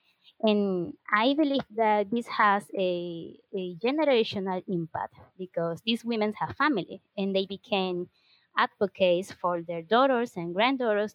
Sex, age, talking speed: female, 20-39, 130 wpm